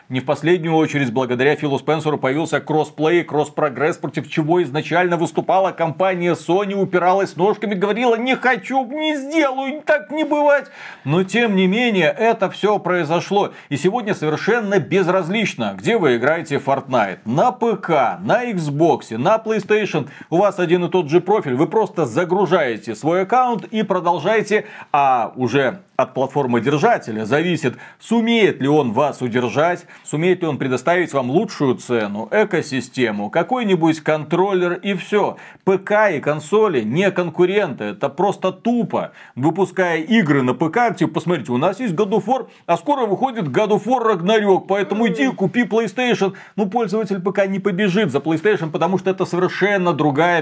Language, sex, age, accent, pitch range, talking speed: Russian, male, 40-59, native, 155-210 Hz, 145 wpm